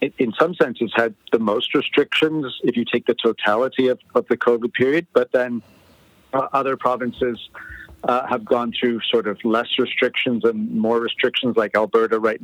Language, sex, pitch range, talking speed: English, male, 110-125 Hz, 175 wpm